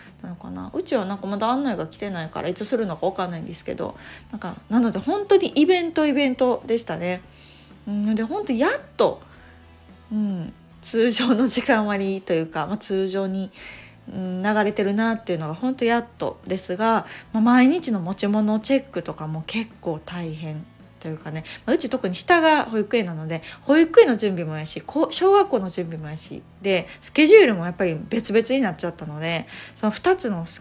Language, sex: Japanese, female